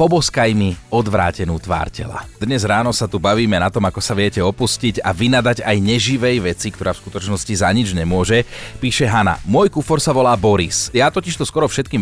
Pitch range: 100-125 Hz